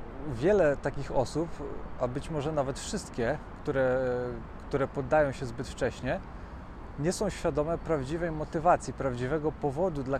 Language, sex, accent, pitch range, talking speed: Polish, male, native, 125-155 Hz, 130 wpm